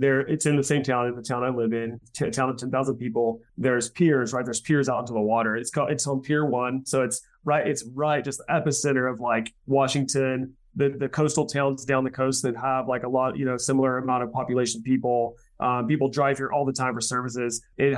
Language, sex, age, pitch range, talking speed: English, male, 30-49, 120-140 Hz, 245 wpm